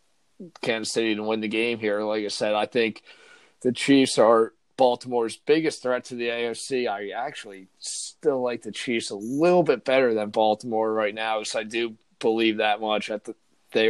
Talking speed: 185 wpm